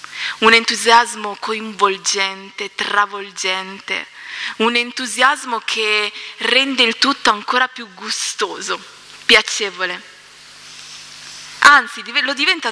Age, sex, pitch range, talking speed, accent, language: 20-39, female, 210-260 Hz, 80 wpm, native, Italian